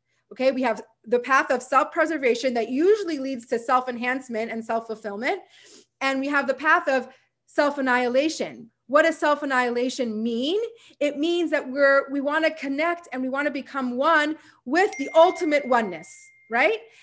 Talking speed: 155 wpm